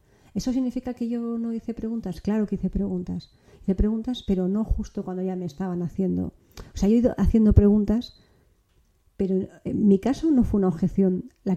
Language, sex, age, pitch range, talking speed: Spanish, female, 40-59, 185-220 Hz, 190 wpm